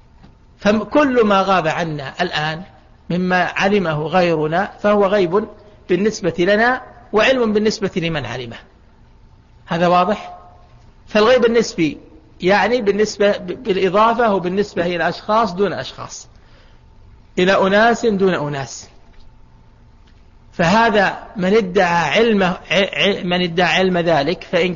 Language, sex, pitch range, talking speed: Arabic, male, 165-205 Hz, 100 wpm